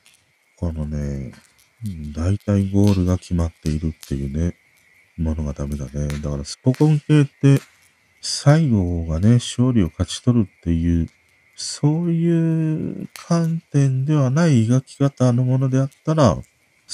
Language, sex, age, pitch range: Japanese, male, 40-59, 80-130 Hz